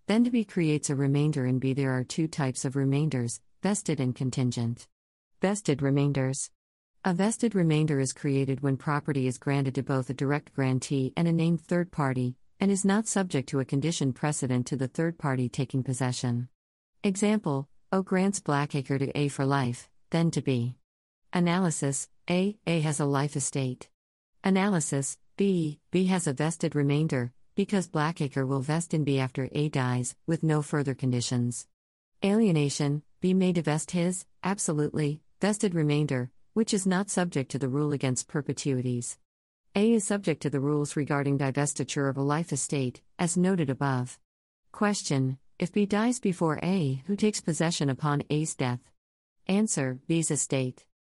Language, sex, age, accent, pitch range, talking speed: English, female, 50-69, American, 130-170 Hz, 160 wpm